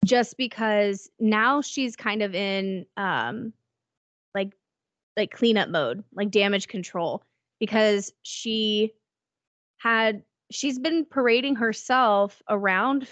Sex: female